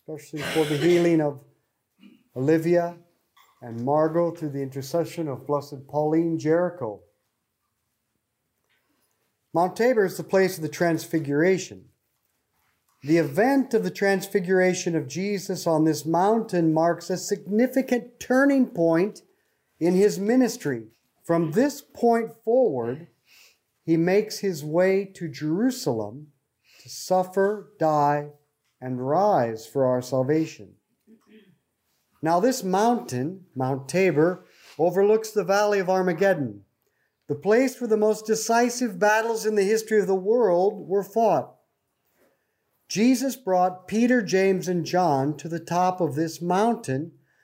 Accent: American